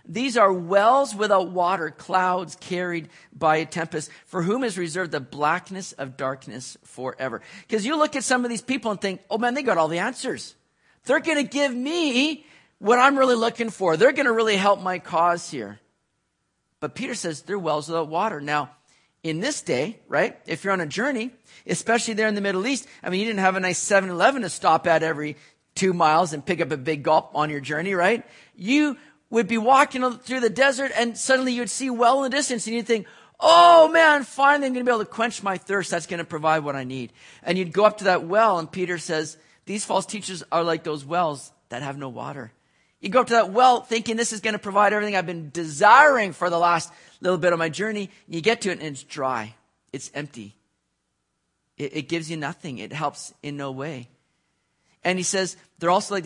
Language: English